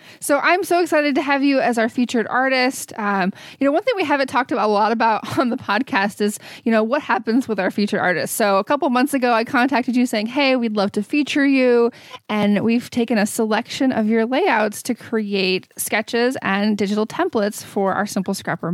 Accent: American